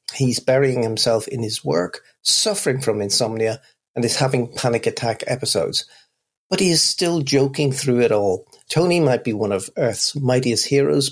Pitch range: 115-140 Hz